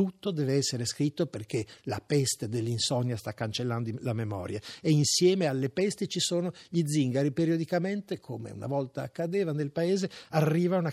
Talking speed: 160 wpm